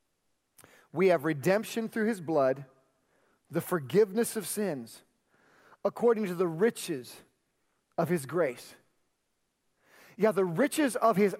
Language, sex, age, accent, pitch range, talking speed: English, male, 40-59, American, 180-230 Hz, 115 wpm